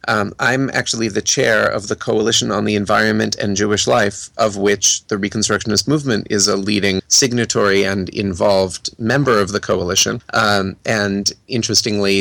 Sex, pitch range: male, 100-115 Hz